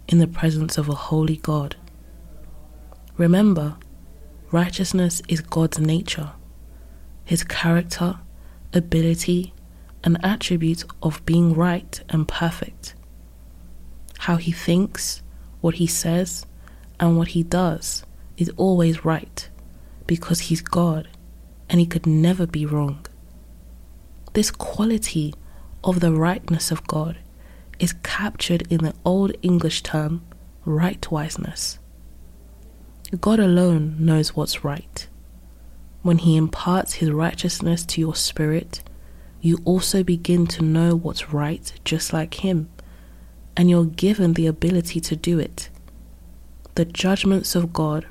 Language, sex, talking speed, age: English, female, 115 wpm, 20-39